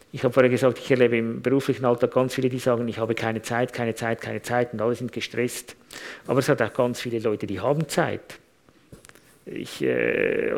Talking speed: 210 wpm